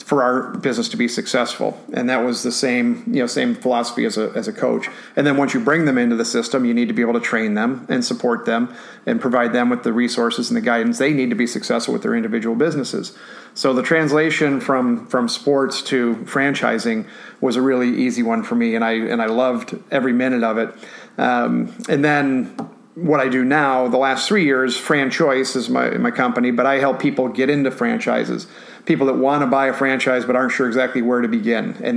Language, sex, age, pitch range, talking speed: English, male, 40-59, 120-145 Hz, 225 wpm